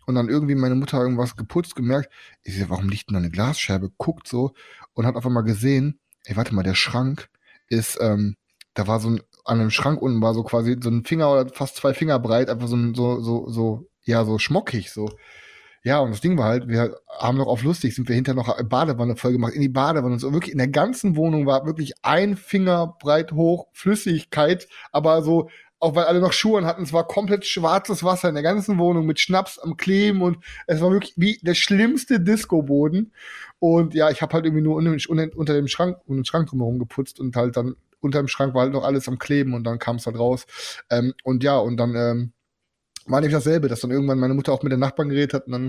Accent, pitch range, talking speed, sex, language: German, 120-165 Hz, 230 wpm, male, German